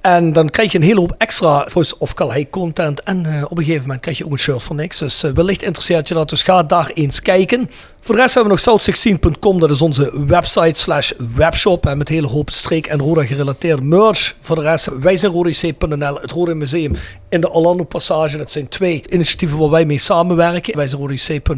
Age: 40-59